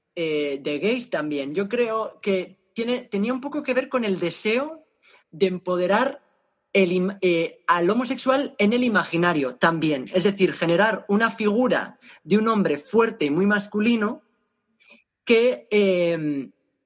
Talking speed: 135 wpm